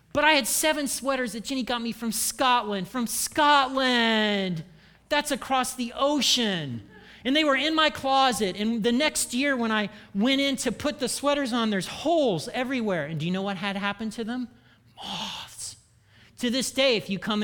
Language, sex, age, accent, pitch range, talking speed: English, male, 40-59, American, 175-240 Hz, 190 wpm